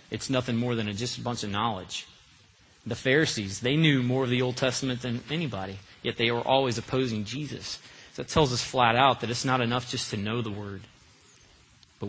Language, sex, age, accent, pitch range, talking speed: English, male, 30-49, American, 110-145 Hz, 215 wpm